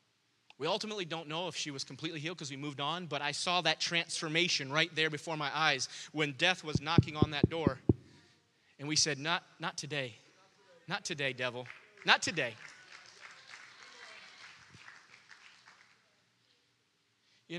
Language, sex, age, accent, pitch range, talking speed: English, male, 30-49, American, 135-185 Hz, 145 wpm